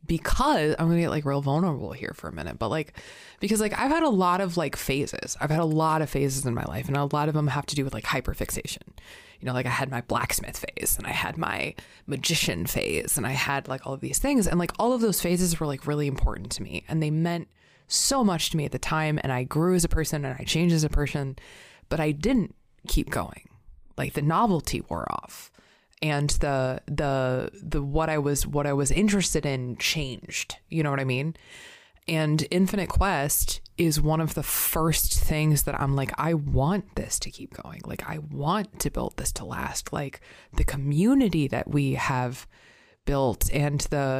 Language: English